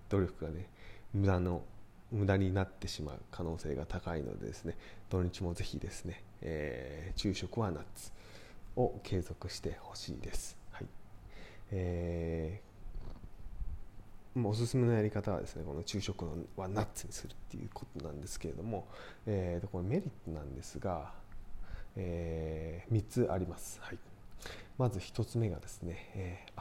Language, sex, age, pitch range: Japanese, male, 20-39, 85-105 Hz